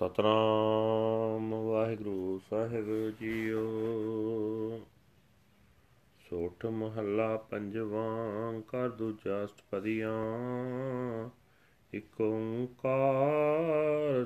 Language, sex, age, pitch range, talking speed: Punjabi, male, 40-59, 110-140 Hz, 45 wpm